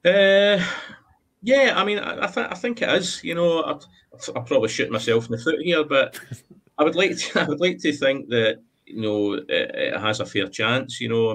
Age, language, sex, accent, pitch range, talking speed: 30-49, English, male, British, 105-130 Hz, 215 wpm